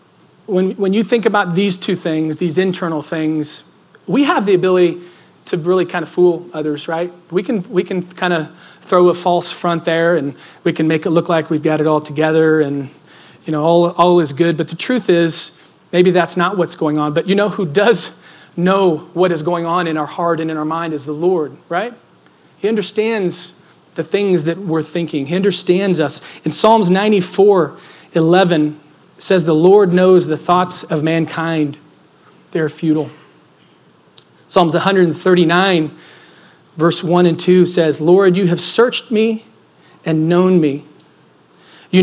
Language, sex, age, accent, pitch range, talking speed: English, male, 40-59, American, 160-190 Hz, 175 wpm